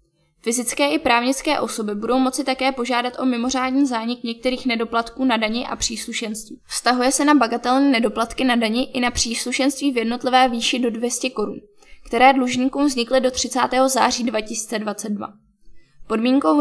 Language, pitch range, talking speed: Czech, 230-260 Hz, 150 wpm